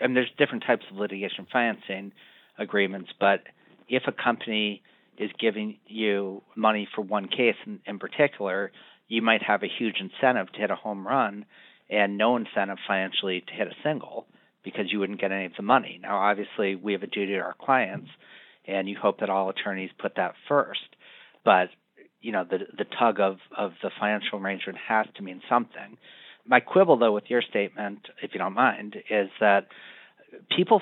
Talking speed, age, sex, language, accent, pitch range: 190 wpm, 40-59, male, English, American, 95-110 Hz